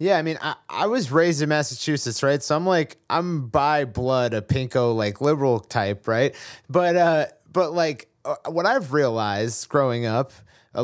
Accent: American